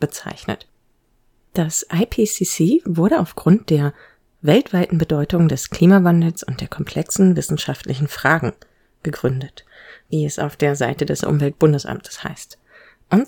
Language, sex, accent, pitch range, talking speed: German, female, German, 150-195 Hz, 115 wpm